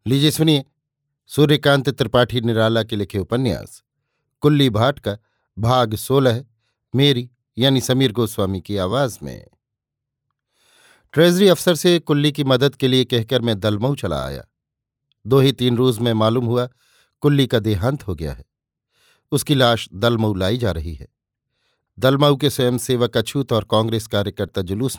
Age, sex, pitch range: 50-69, male, 110-135 Hz